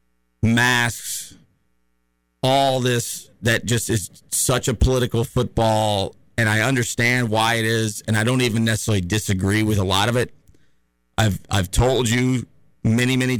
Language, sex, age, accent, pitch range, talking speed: English, male, 40-59, American, 100-125 Hz, 150 wpm